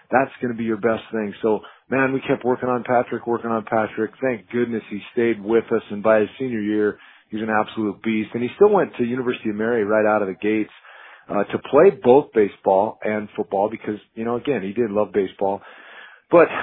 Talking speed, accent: 220 wpm, American